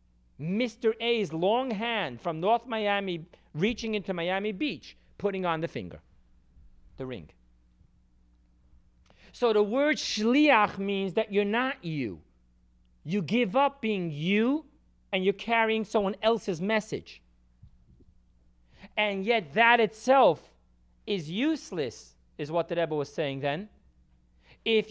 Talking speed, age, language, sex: 125 wpm, 40-59, English, male